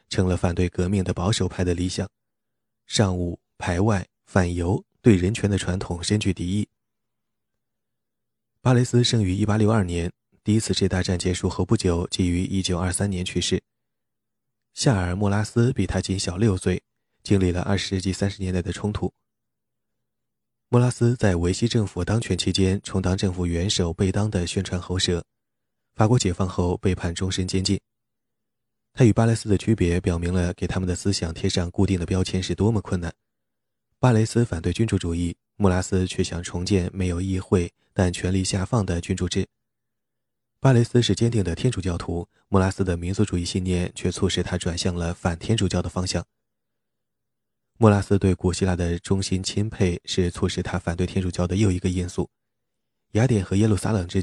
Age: 20-39